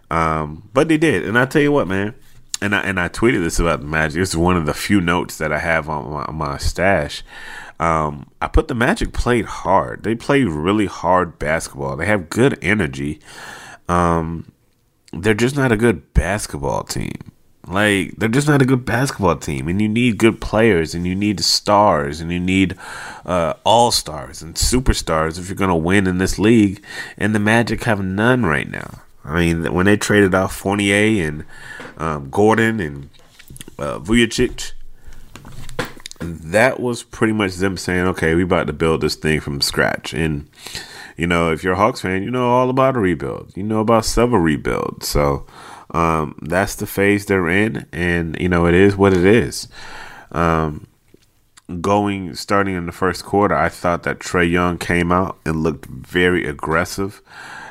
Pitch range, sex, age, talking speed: 80-105 Hz, male, 30-49, 185 wpm